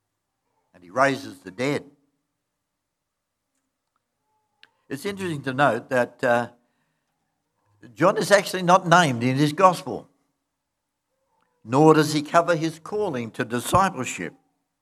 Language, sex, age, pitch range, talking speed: English, male, 60-79, 120-170 Hz, 105 wpm